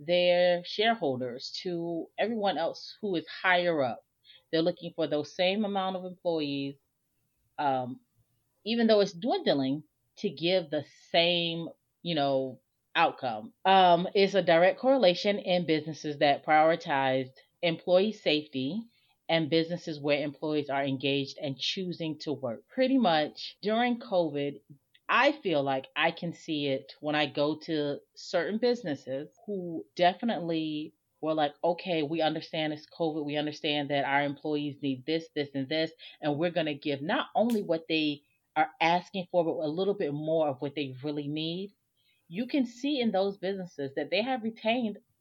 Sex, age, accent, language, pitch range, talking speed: female, 30-49, American, English, 145-190 Hz, 155 wpm